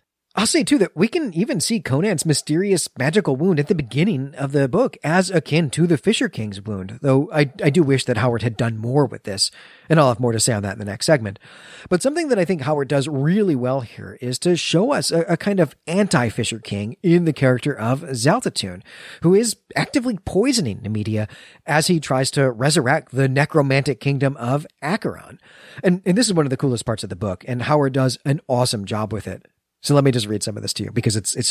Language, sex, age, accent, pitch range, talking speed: English, male, 40-59, American, 115-165 Hz, 230 wpm